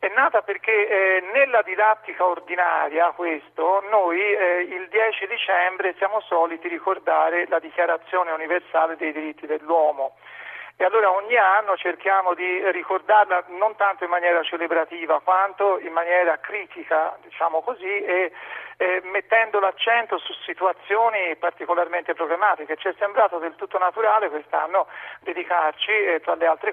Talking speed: 130 wpm